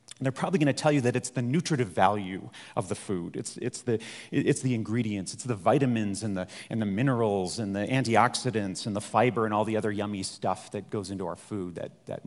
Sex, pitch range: male, 110-135 Hz